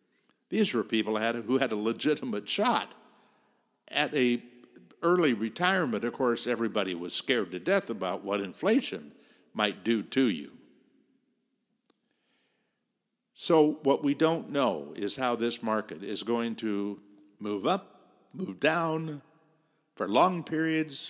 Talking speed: 130 wpm